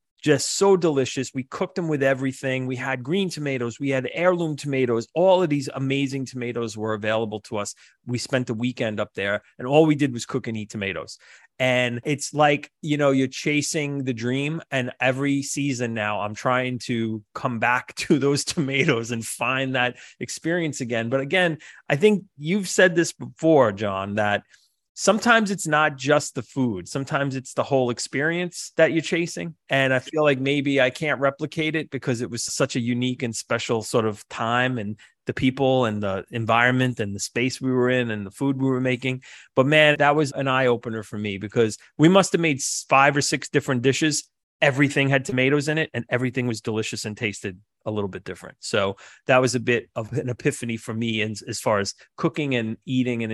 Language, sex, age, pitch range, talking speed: English, male, 30-49, 120-150 Hz, 200 wpm